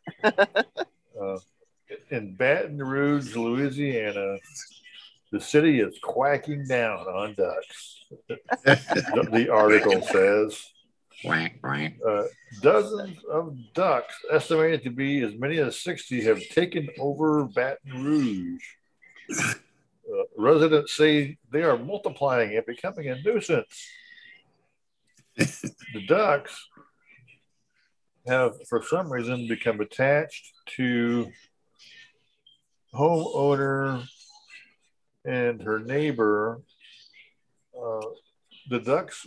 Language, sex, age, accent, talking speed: English, male, 60-79, American, 85 wpm